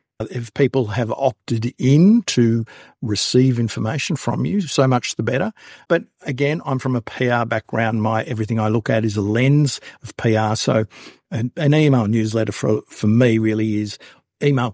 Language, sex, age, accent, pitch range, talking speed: English, male, 50-69, Australian, 110-130 Hz, 170 wpm